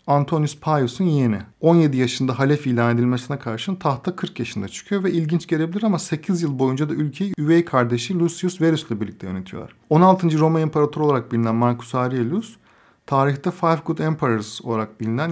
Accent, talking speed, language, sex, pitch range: native, 160 wpm, Turkish, male, 125-165 Hz